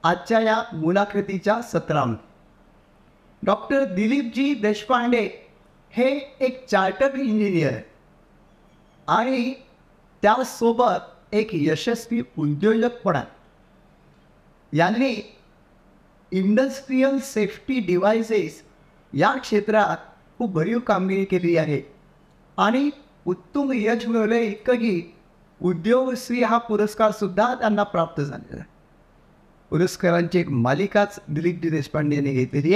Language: Marathi